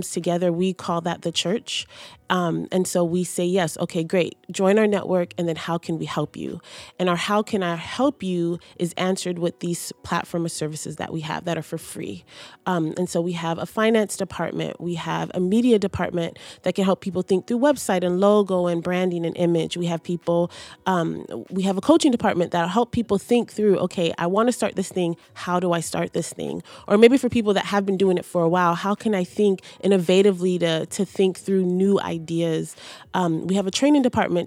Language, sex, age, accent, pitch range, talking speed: English, female, 30-49, American, 175-200 Hz, 225 wpm